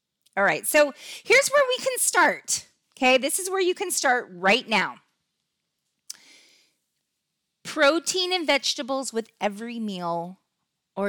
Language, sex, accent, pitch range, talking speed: English, female, American, 185-250 Hz, 130 wpm